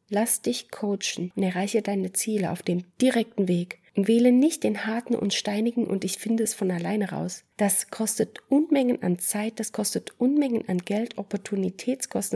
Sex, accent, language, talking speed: female, German, German, 175 wpm